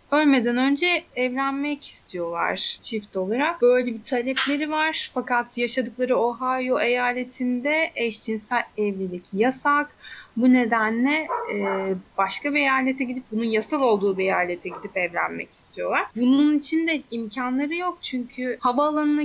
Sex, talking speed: female, 120 wpm